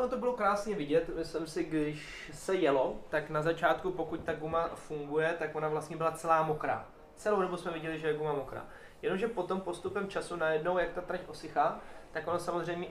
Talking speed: 195 wpm